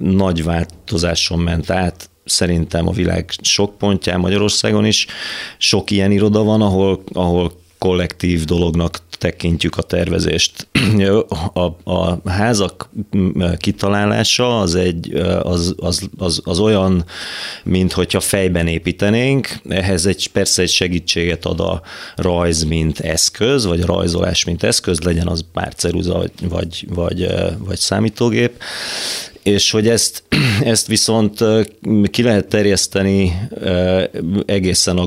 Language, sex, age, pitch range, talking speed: Hungarian, male, 30-49, 85-100 Hz, 120 wpm